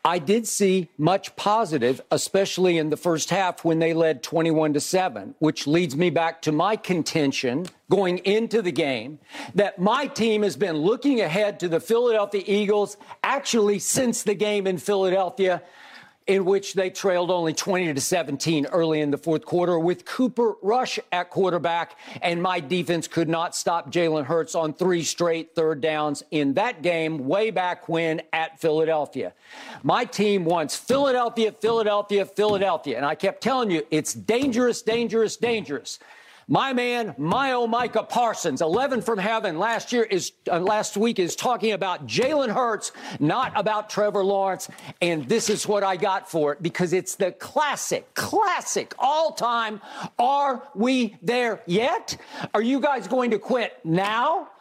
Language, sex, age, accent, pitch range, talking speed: English, male, 50-69, American, 170-225 Hz, 160 wpm